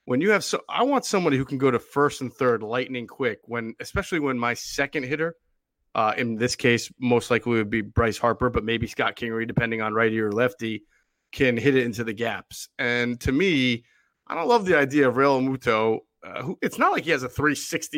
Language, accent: English, American